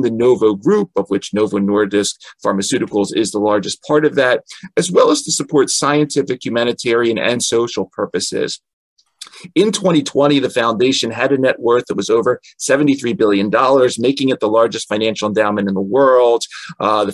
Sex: male